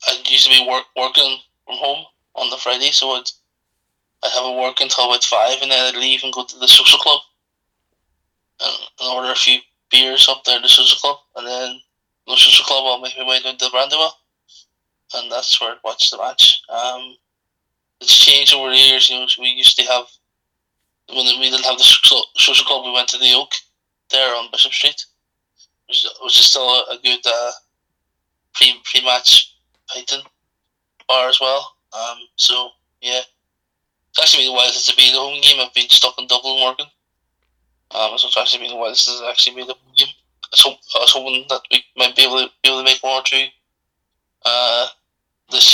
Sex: male